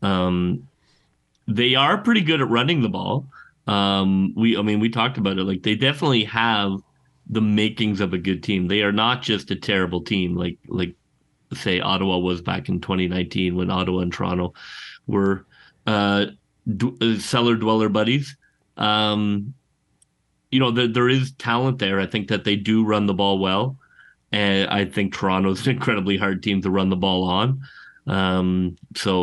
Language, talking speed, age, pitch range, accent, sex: English, 170 wpm, 30-49, 95-110 Hz, American, male